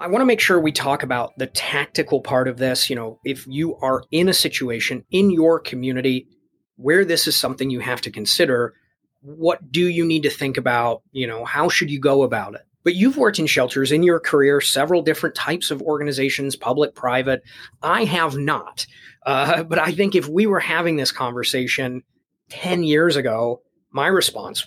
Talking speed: 195 wpm